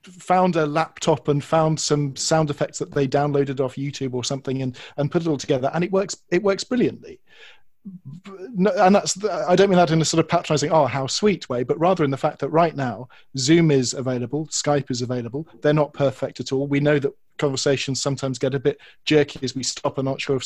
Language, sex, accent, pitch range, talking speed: English, male, British, 130-155 Hz, 230 wpm